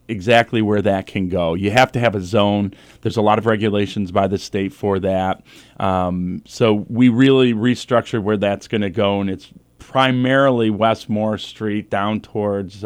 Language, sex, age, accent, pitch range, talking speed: English, male, 40-59, American, 95-115 Hz, 175 wpm